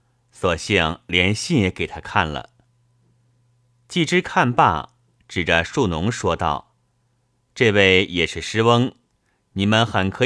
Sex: male